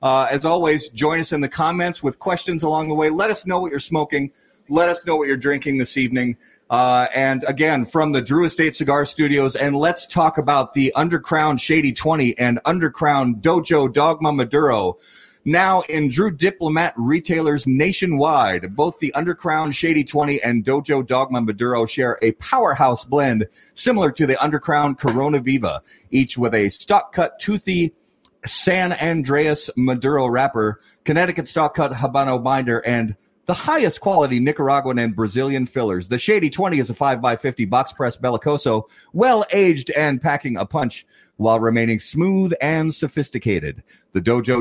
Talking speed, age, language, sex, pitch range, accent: 155 wpm, 30-49, English, male, 125-160 Hz, American